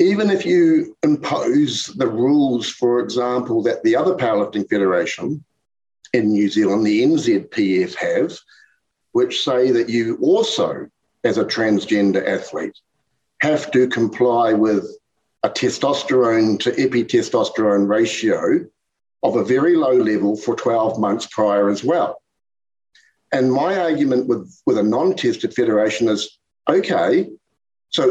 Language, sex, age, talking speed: English, male, 50-69, 125 wpm